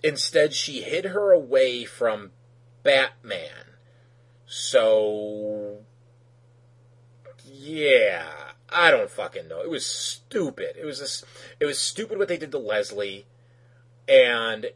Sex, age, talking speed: male, 30-49, 115 wpm